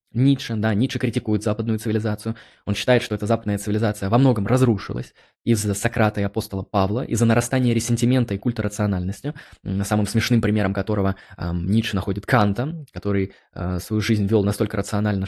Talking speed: 160 wpm